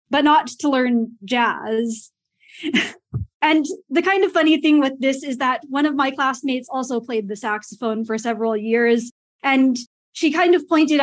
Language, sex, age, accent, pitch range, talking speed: English, female, 20-39, American, 240-300 Hz, 170 wpm